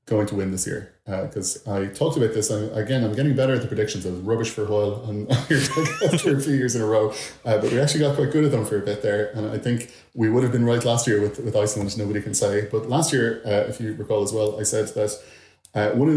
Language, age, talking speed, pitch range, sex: English, 30-49, 290 wpm, 100-115 Hz, male